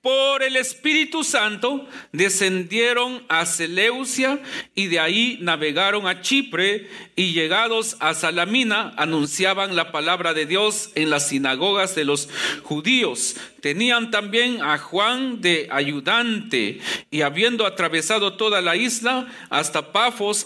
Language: Spanish